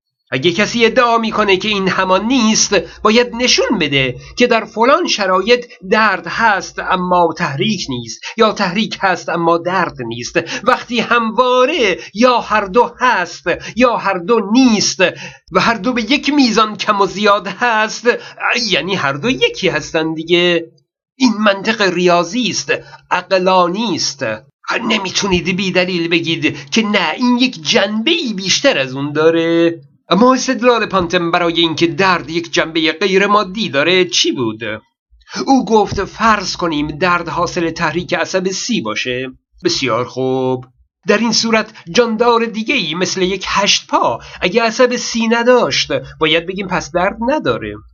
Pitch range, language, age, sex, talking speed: 170-230 Hz, Persian, 50-69, male, 145 wpm